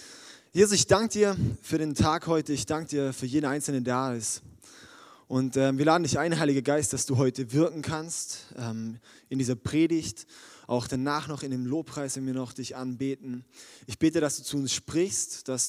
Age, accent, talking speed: 20-39, German, 205 wpm